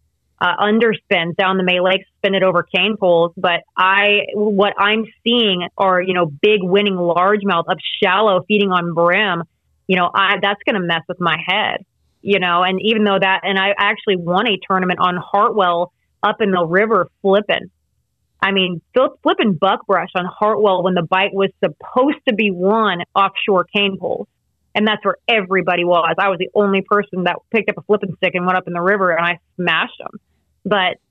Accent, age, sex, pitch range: American, 30-49, female, 180-205 Hz